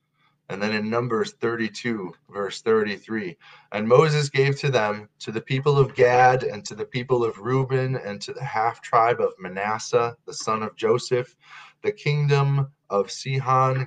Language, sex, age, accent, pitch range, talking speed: English, male, 20-39, American, 95-140 Hz, 160 wpm